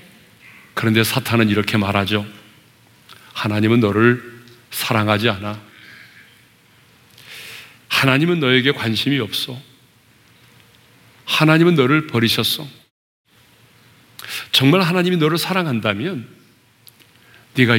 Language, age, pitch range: Korean, 40-59, 115-150 Hz